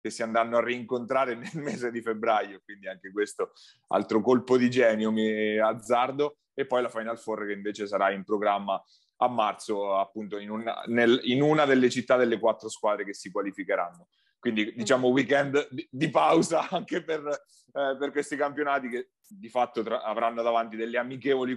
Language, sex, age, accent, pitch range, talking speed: Italian, male, 30-49, native, 110-130 Hz, 175 wpm